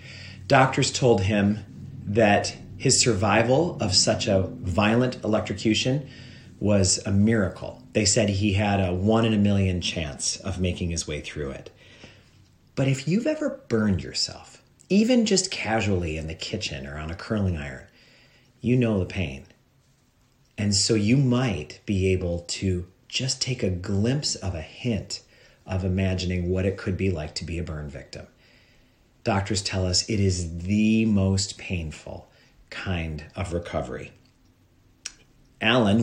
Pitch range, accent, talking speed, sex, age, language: 95-115 Hz, American, 150 wpm, male, 40-59, English